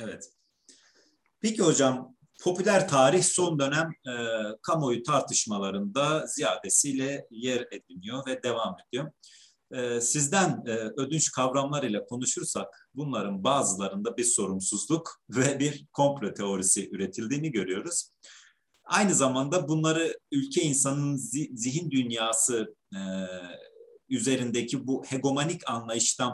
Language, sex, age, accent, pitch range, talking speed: Turkish, male, 40-59, native, 120-165 Hz, 105 wpm